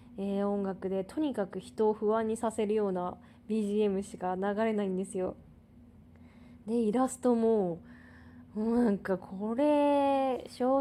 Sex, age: female, 20-39